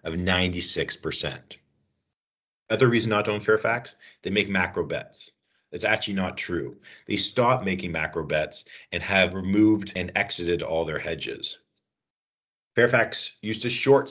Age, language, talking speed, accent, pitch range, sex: 40-59, English, 140 wpm, American, 85-105 Hz, male